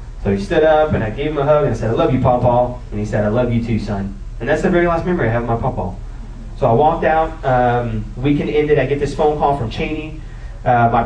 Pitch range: 115-145 Hz